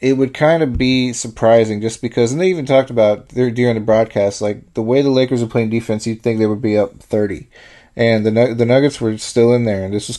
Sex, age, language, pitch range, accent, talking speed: male, 30-49, English, 105-120 Hz, American, 255 wpm